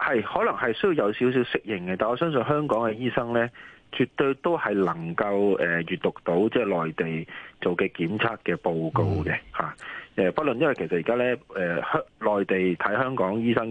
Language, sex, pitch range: Chinese, male, 85-115 Hz